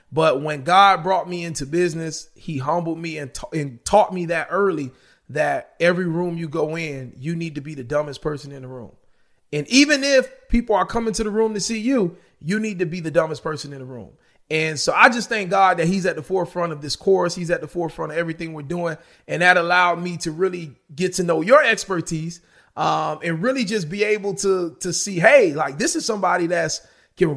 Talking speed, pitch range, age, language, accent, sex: 230 wpm, 160-200 Hz, 30-49, English, American, male